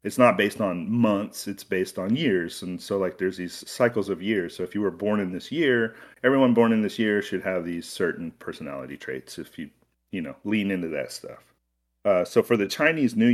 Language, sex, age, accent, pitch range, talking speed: English, male, 40-59, American, 80-105 Hz, 225 wpm